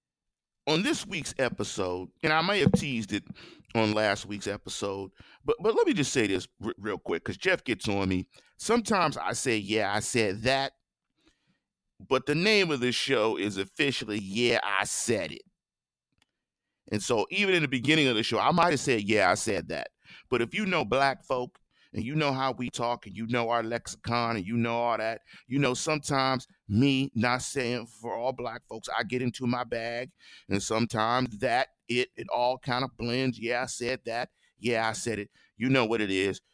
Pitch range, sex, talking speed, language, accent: 105-135 Hz, male, 200 wpm, English, American